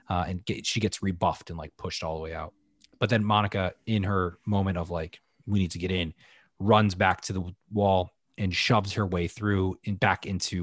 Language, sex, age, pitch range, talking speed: English, male, 20-39, 95-110 Hz, 215 wpm